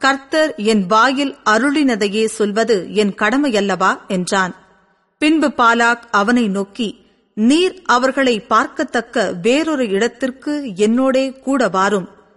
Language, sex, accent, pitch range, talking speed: Tamil, female, native, 210-275 Hz, 95 wpm